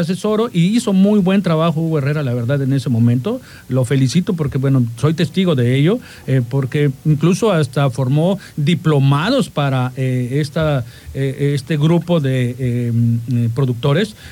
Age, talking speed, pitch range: 50-69, 150 wpm, 140-190 Hz